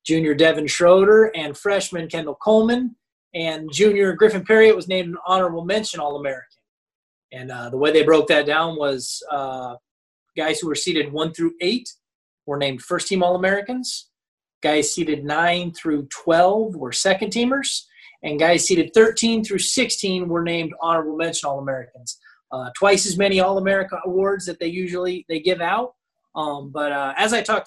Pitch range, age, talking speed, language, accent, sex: 150-190 Hz, 20-39, 160 wpm, English, American, male